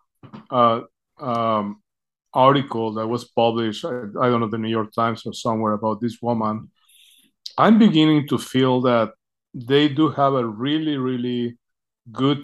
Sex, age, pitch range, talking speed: male, 50-69, 115-135 Hz, 150 wpm